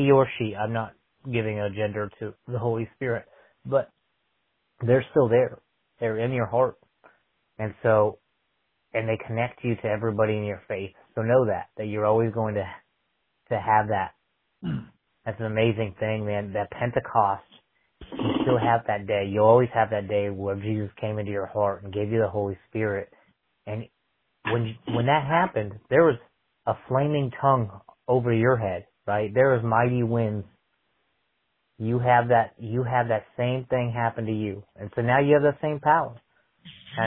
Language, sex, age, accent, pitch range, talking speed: English, male, 30-49, American, 105-125 Hz, 175 wpm